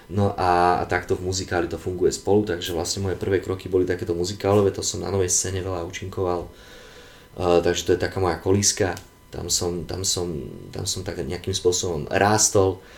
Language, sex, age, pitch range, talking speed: Slovak, male, 20-39, 85-100 Hz, 190 wpm